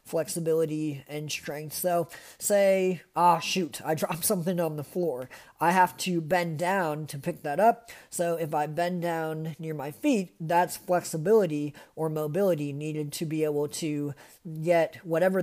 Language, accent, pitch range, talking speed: English, American, 150-180 Hz, 160 wpm